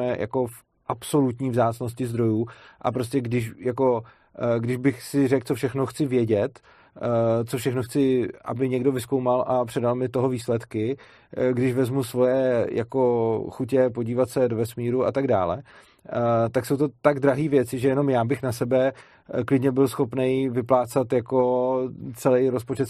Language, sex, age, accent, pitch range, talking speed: Czech, male, 30-49, native, 125-140 Hz, 150 wpm